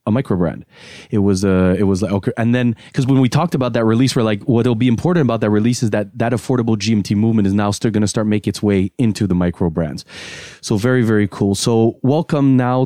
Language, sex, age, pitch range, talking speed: English, male, 20-39, 100-125 Hz, 255 wpm